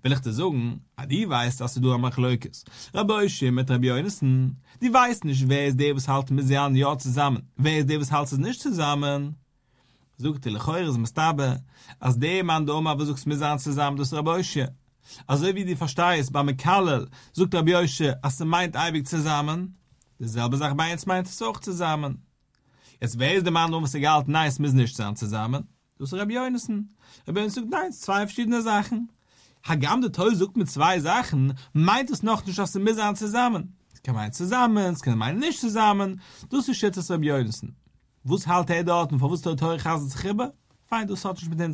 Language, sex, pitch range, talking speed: English, male, 130-175 Hz, 215 wpm